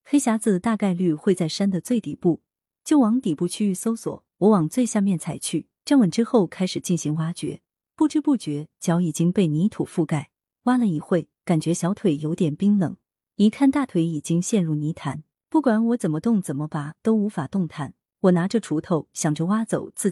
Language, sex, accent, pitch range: Chinese, female, native, 160-220 Hz